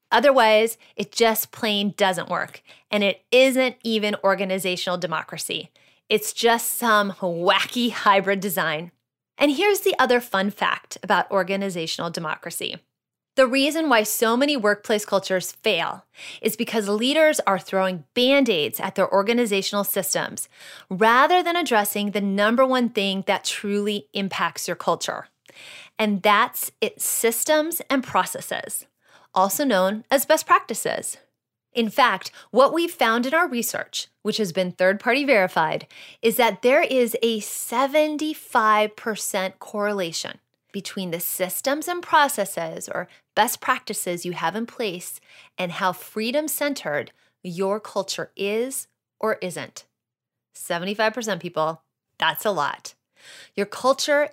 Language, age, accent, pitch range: English, 20-39, American, 190-245 Hz